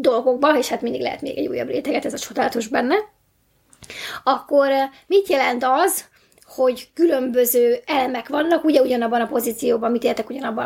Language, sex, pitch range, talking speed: Hungarian, female, 240-315 Hz, 160 wpm